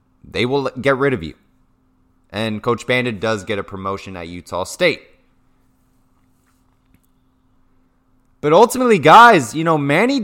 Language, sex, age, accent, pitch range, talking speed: English, male, 20-39, American, 100-140 Hz, 130 wpm